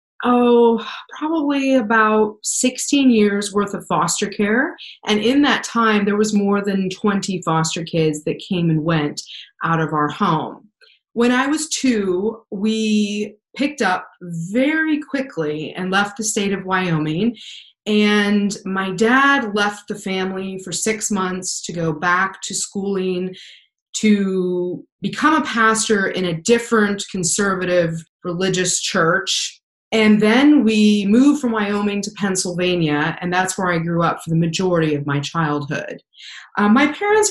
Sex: female